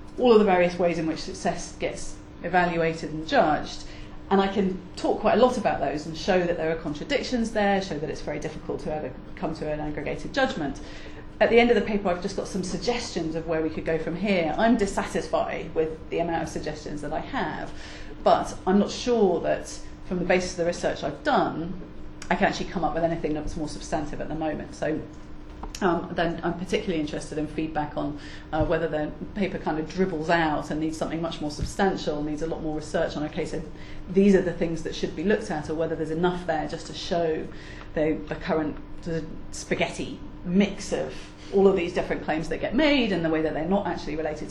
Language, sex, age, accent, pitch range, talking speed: English, female, 40-59, British, 155-185 Hz, 220 wpm